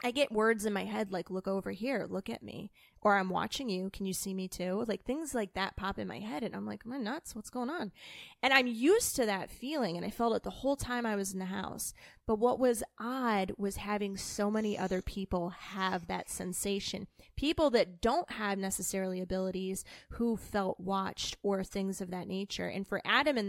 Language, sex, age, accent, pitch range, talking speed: English, female, 20-39, American, 190-240 Hz, 225 wpm